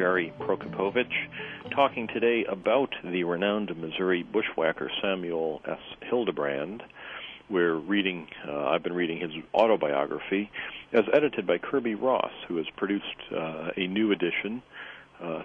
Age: 50-69